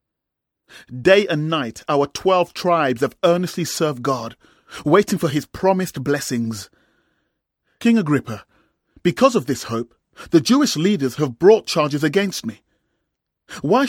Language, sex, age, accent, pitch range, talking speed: English, male, 40-59, British, 140-195 Hz, 130 wpm